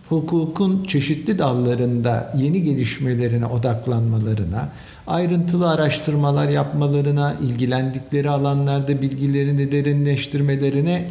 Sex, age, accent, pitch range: male, 50-69, native, 125-165 Hz